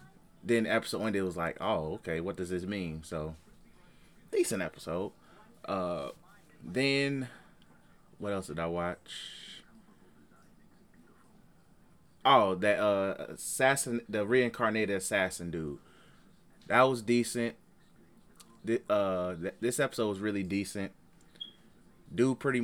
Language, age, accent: English, 30-49, American